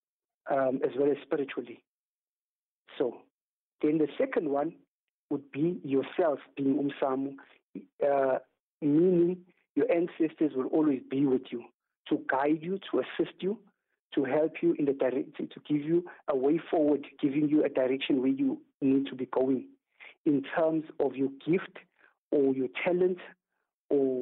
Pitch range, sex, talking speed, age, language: 135-165 Hz, male, 150 wpm, 50-69, English